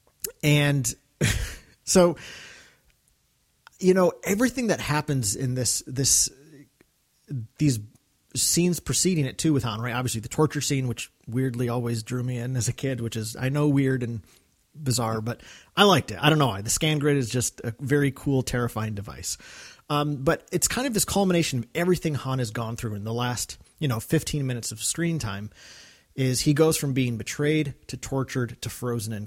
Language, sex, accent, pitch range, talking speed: English, male, American, 115-150 Hz, 185 wpm